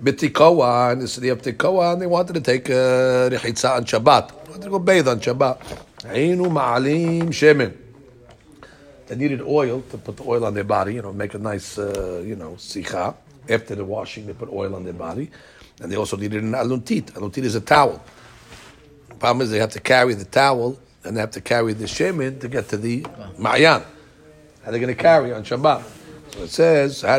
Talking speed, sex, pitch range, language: 190 wpm, male, 120-155 Hz, English